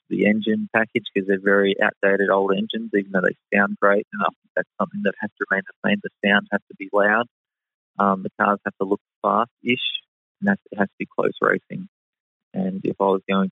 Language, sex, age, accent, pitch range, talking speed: English, male, 20-39, Australian, 100-110 Hz, 220 wpm